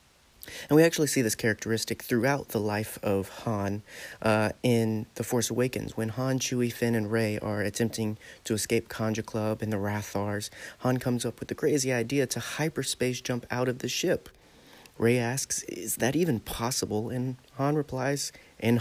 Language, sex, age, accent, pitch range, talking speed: English, male, 30-49, American, 110-130 Hz, 175 wpm